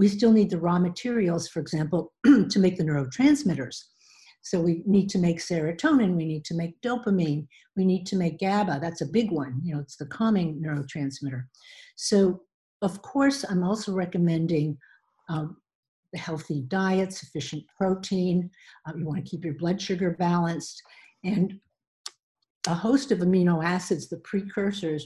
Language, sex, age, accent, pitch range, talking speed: English, female, 60-79, American, 160-210 Hz, 160 wpm